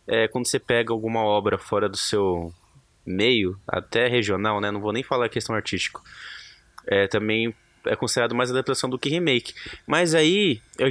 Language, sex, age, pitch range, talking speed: Portuguese, male, 20-39, 100-145 Hz, 175 wpm